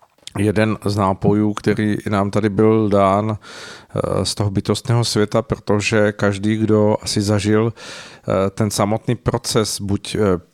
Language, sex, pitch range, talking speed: Czech, male, 100-115 Hz, 120 wpm